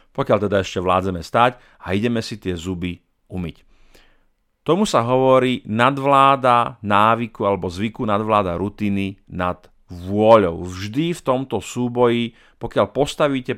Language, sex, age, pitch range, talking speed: Slovak, male, 40-59, 95-120 Hz, 125 wpm